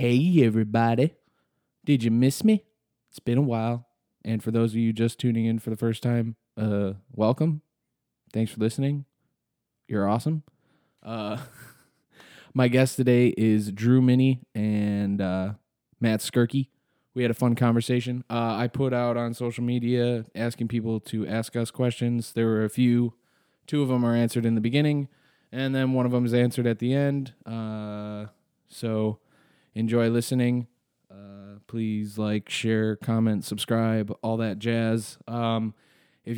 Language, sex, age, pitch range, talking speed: English, male, 20-39, 105-125 Hz, 155 wpm